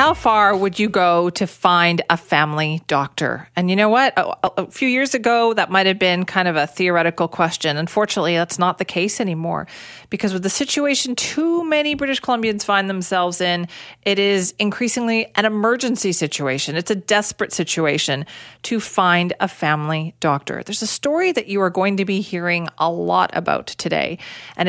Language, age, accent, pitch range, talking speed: English, 40-59, American, 175-215 Hz, 180 wpm